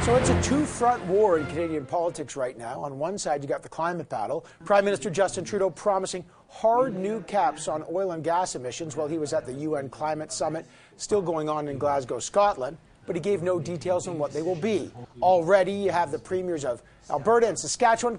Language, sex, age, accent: English, male, 40-59, American